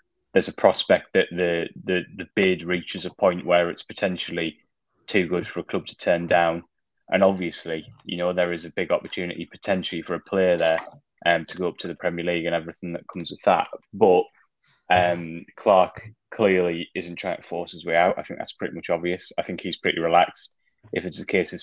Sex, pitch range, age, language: male, 85-90 Hz, 20-39, English